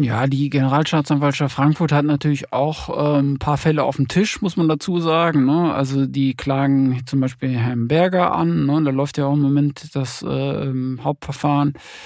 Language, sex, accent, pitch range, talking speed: German, male, German, 135-160 Hz, 175 wpm